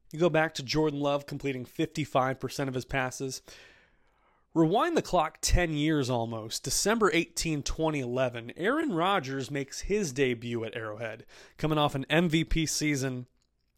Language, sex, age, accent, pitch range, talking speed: English, male, 30-49, American, 125-155 Hz, 140 wpm